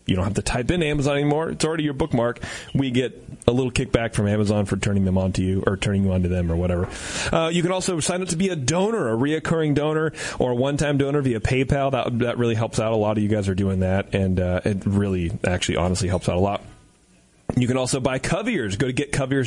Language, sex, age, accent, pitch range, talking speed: English, male, 30-49, American, 100-140 Hz, 255 wpm